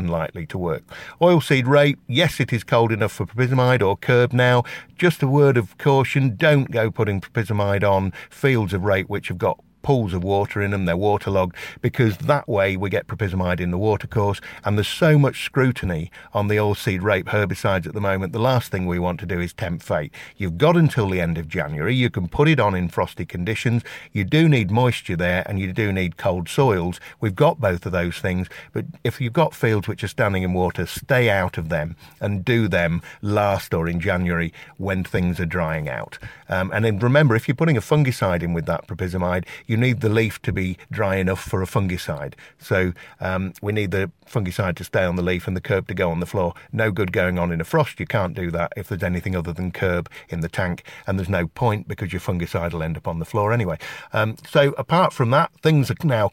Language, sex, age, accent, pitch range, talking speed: English, male, 50-69, British, 90-125 Hz, 230 wpm